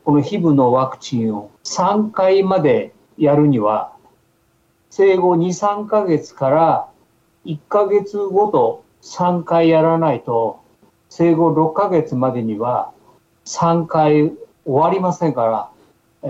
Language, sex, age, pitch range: Japanese, male, 50-69, 125-185 Hz